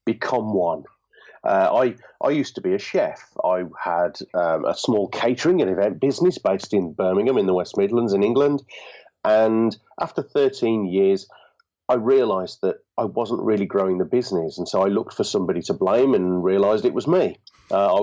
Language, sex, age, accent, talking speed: English, male, 40-59, British, 185 wpm